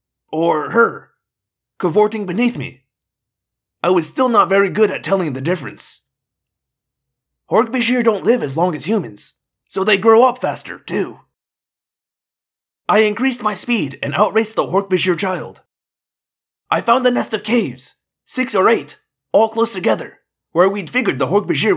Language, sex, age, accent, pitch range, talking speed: English, male, 30-49, American, 170-235 Hz, 150 wpm